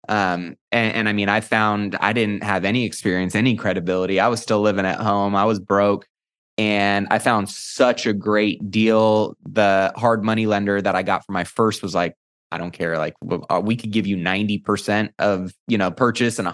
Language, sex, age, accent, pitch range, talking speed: English, male, 20-39, American, 100-115 Hz, 220 wpm